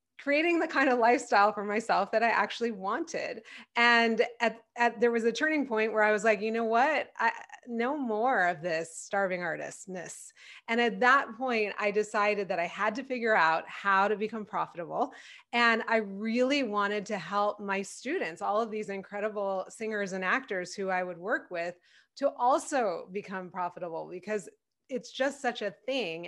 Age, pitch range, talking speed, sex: 20-39, 190-235 Hz, 180 wpm, female